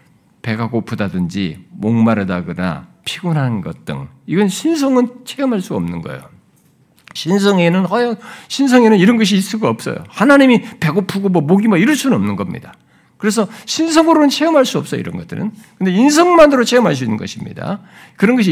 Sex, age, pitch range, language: male, 50-69, 150-225 Hz, Korean